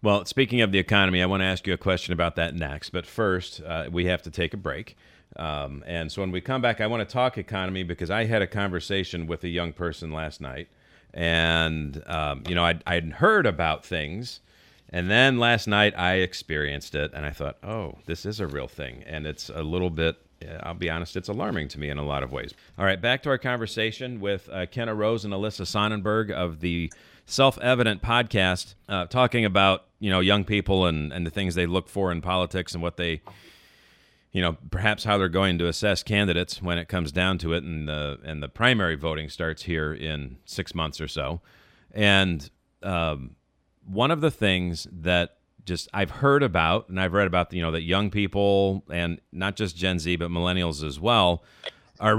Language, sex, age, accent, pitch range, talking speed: English, male, 40-59, American, 80-100 Hz, 210 wpm